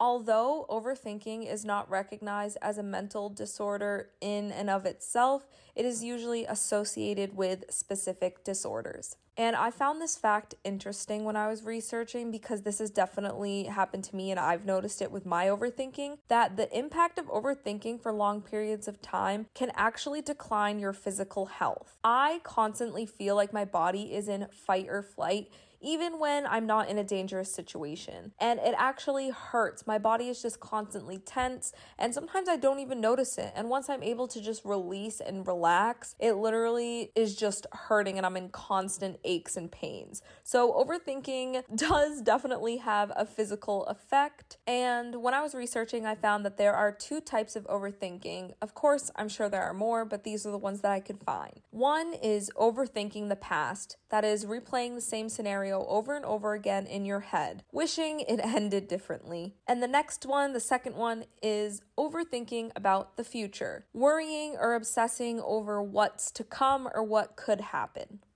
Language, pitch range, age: English, 200-245 Hz, 20-39